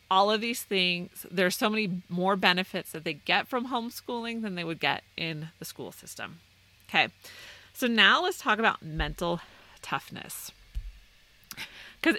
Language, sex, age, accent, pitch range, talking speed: English, female, 30-49, American, 155-205 Hz, 155 wpm